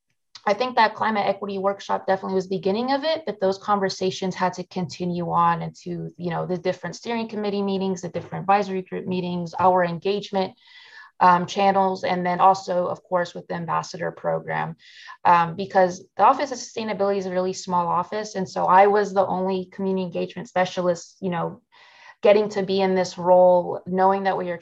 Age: 20-39